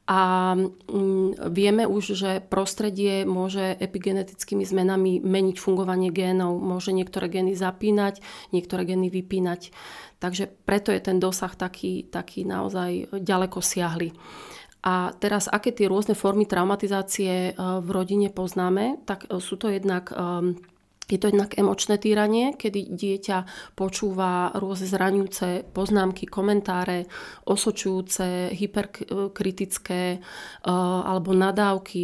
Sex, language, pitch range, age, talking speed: female, Slovak, 185-200 Hz, 30-49, 110 wpm